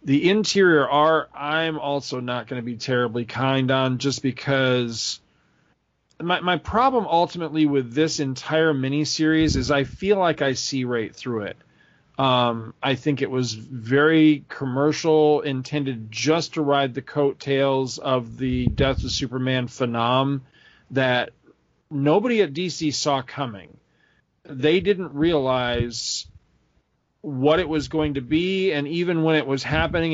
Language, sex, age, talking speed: English, male, 40-59, 140 wpm